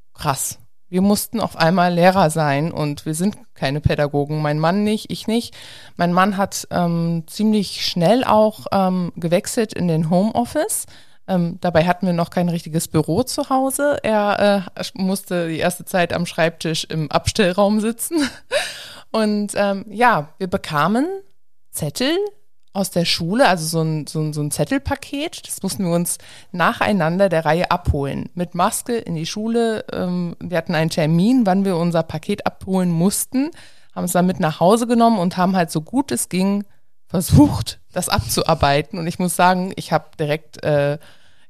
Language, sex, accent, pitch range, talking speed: German, female, German, 160-205 Hz, 170 wpm